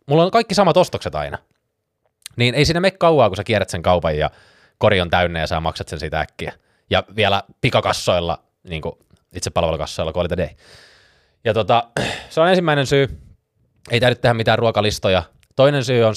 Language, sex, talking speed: Finnish, male, 180 wpm